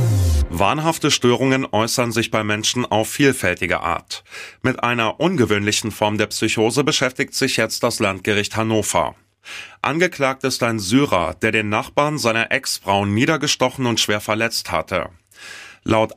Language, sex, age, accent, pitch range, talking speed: German, male, 30-49, German, 105-130 Hz, 135 wpm